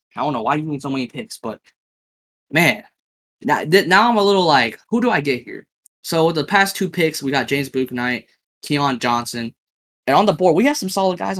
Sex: male